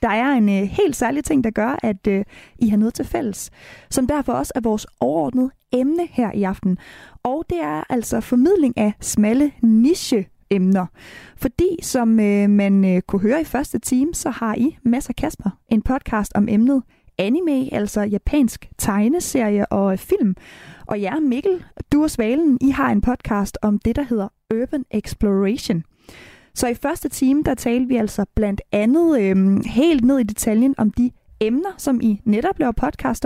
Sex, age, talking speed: female, 20-39, 180 wpm